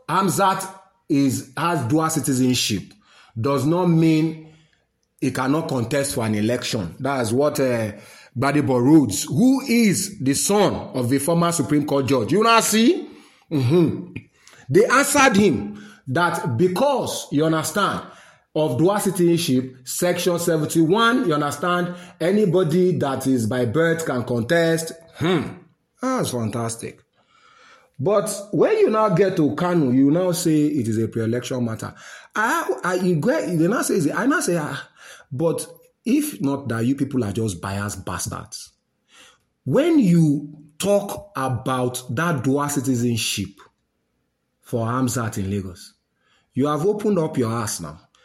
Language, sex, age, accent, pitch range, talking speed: English, male, 30-49, Nigerian, 125-200 Hz, 140 wpm